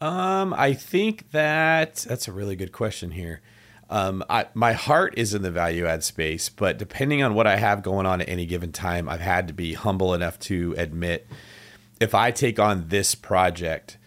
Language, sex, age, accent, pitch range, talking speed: English, male, 30-49, American, 90-110 Hz, 195 wpm